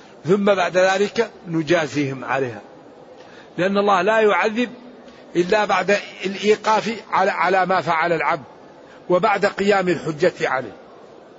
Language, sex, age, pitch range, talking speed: Arabic, male, 60-79, 180-225 Hz, 105 wpm